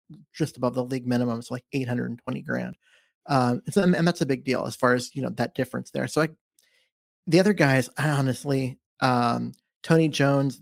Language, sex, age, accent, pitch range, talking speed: English, male, 30-49, American, 125-155 Hz, 200 wpm